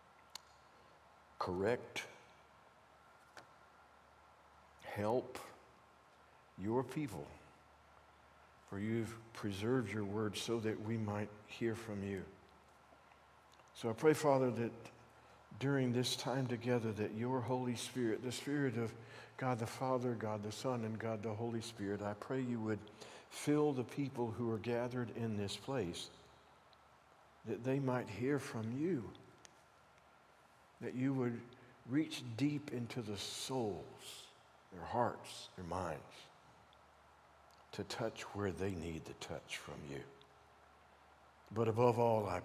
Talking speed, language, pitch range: 125 wpm, English, 100-125 Hz